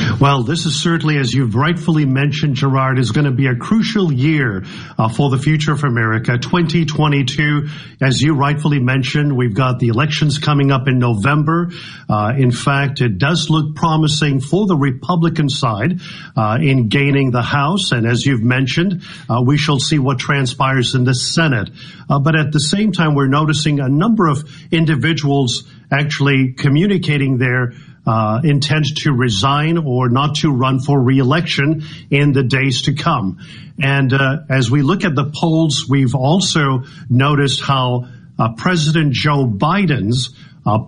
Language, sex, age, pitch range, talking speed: English, male, 50-69, 130-155 Hz, 165 wpm